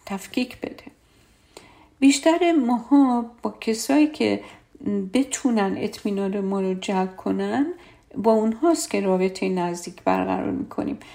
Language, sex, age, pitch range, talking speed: Persian, female, 50-69, 195-270 Hz, 115 wpm